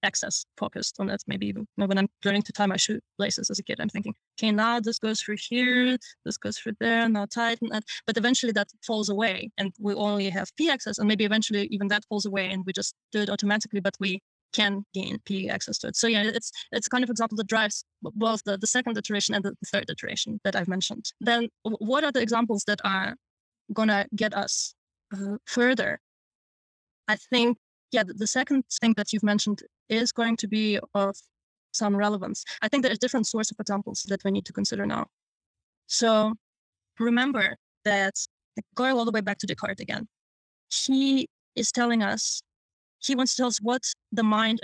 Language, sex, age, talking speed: English, female, 20-39, 205 wpm